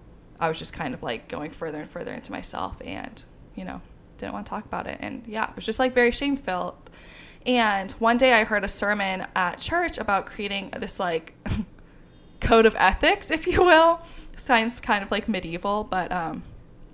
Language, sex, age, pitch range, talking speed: English, female, 20-39, 180-230 Hz, 195 wpm